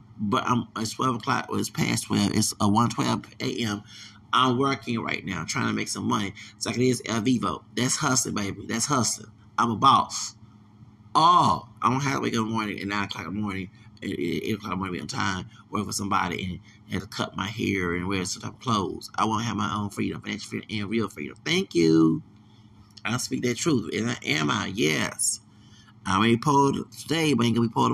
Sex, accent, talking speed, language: male, American, 230 wpm, English